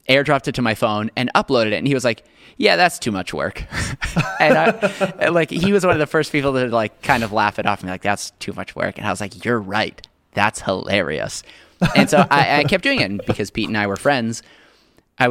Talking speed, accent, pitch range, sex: 245 wpm, American, 100-125 Hz, male